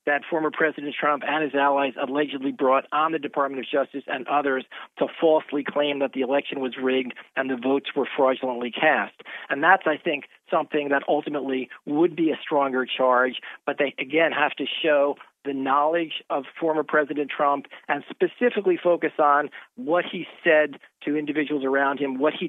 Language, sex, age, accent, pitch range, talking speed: English, male, 40-59, American, 135-155 Hz, 180 wpm